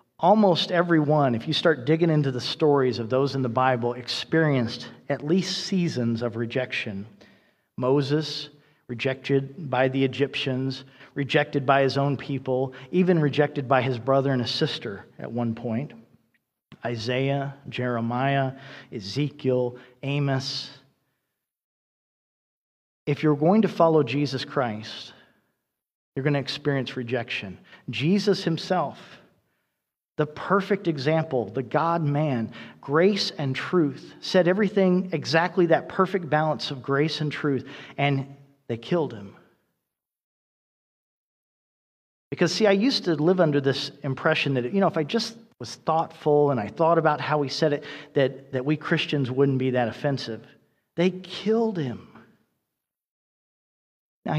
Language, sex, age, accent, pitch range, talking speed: English, male, 40-59, American, 130-160 Hz, 130 wpm